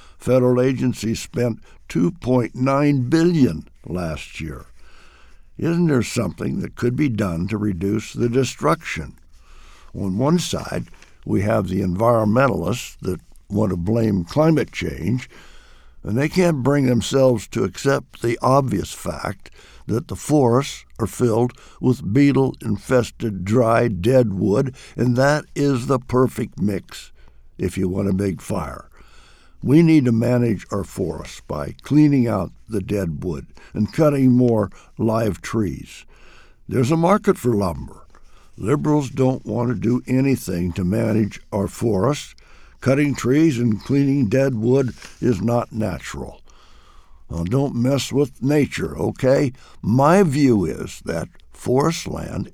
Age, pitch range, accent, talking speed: 60-79, 105-135 Hz, American, 130 wpm